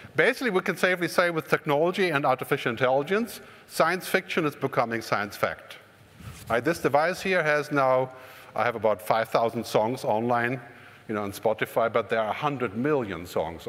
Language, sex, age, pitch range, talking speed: English, male, 50-69, 115-160 Hz, 160 wpm